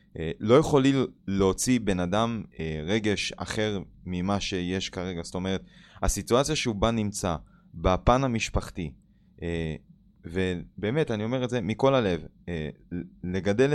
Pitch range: 90-115 Hz